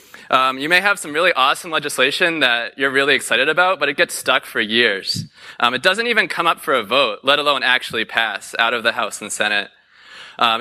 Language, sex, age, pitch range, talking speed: English, male, 20-39, 130-170 Hz, 220 wpm